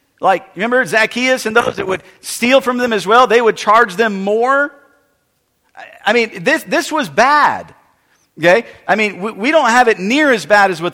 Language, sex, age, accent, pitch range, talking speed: English, male, 50-69, American, 180-255 Hz, 195 wpm